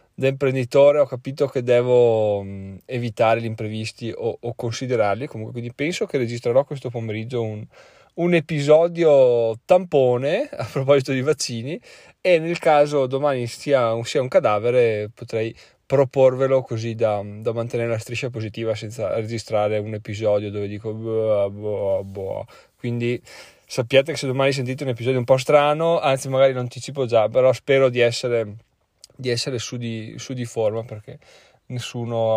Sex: male